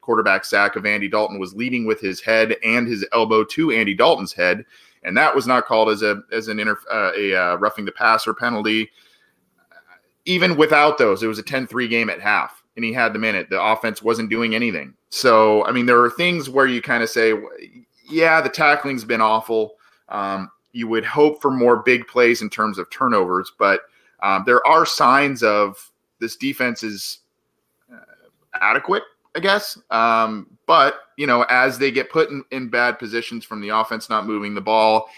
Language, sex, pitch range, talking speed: English, male, 105-130 Hz, 200 wpm